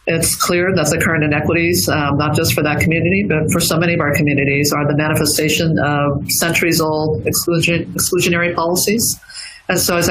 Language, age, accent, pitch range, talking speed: English, 50-69, American, 150-165 Hz, 170 wpm